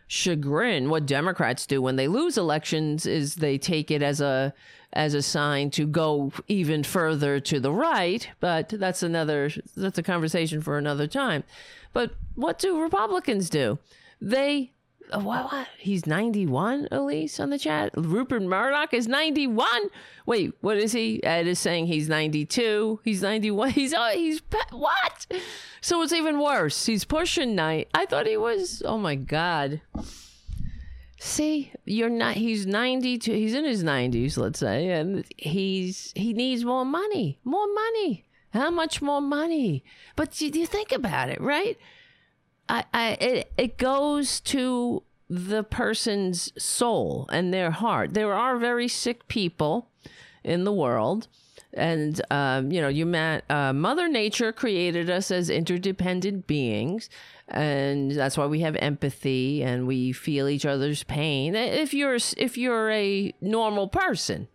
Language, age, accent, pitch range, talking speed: English, 40-59, American, 150-255 Hz, 150 wpm